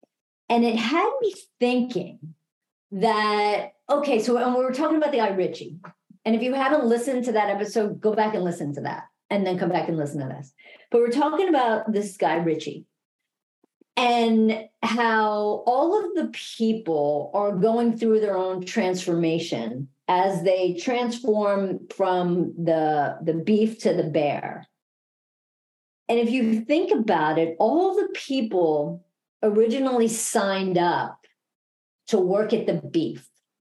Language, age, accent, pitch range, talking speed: English, 50-69, American, 180-240 Hz, 150 wpm